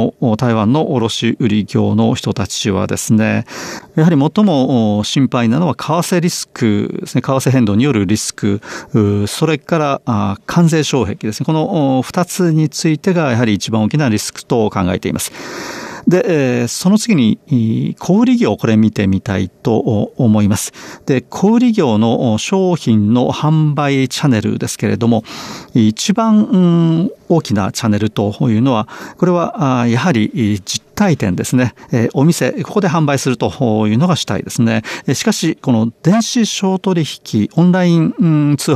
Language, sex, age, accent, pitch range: Japanese, male, 40-59, native, 110-155 Hz